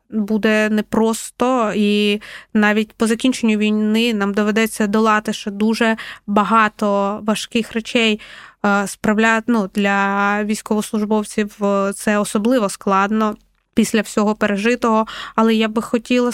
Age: 20-39